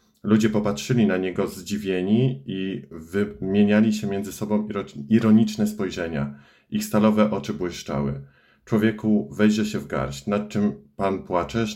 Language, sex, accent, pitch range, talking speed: Polish, male, native, 100-110 Hz, 130 wpm